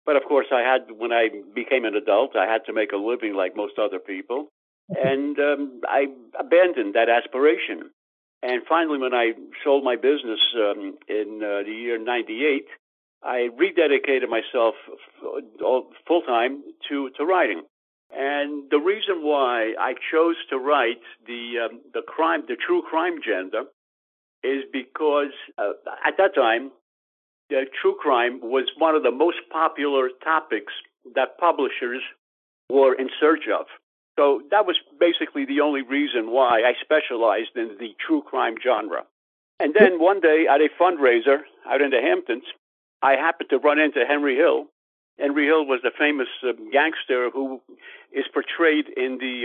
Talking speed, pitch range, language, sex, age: 155 wpm, 130-170 Hz, English, male, 60-79